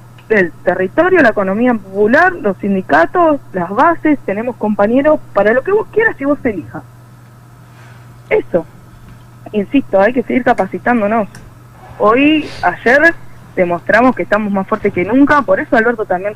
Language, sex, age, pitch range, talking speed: Spanish, female, 20-39, 170-280 Hz, 140 wpm